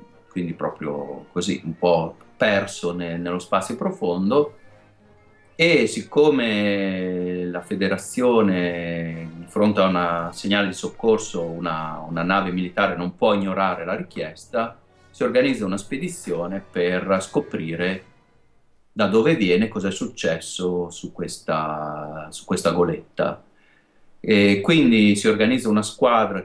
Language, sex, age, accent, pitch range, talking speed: Italian, male, 30-49, native, 90-110 Hz, 120 wpm